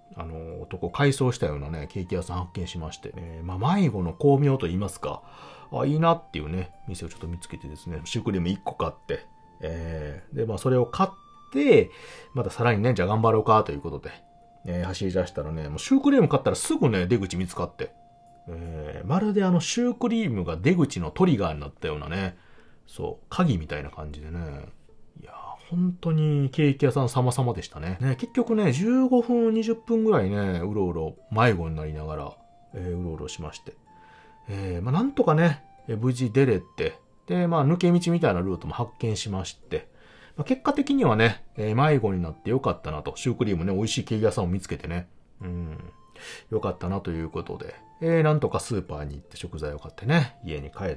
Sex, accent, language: male, native, Japanese